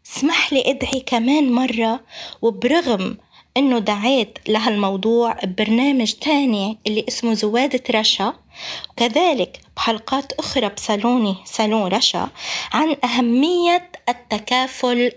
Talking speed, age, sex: 95 wpm, 20-39, female